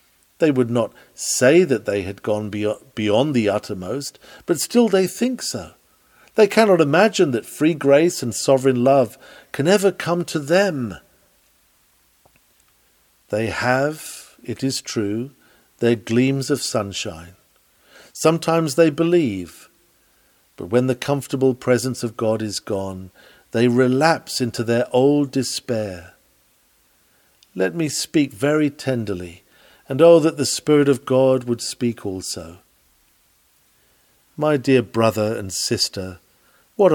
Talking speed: 125 wpm